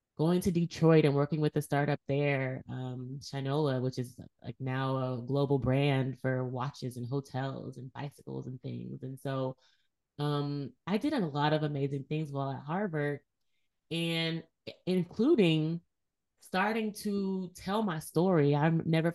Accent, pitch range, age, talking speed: American, 135-155 Hz, 20-39, 150 wpm